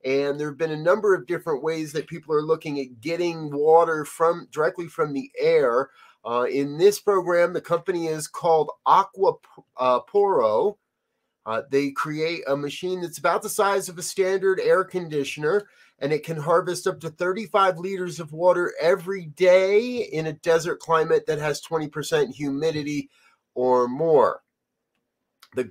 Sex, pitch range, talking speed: male, 140-180 Hz, 160 wpm